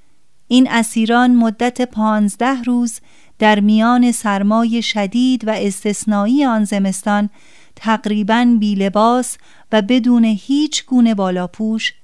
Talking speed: 105 wpm